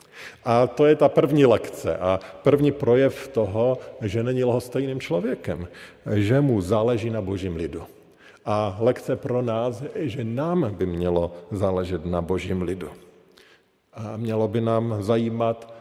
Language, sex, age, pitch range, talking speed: Slovak, male, 50-69, 105-130 Hz, 145 wpm